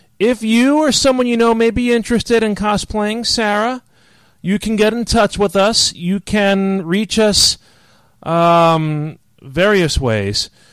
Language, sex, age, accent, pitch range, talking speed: English, male, 30-49, American, 155-205 Hz, 145 wpm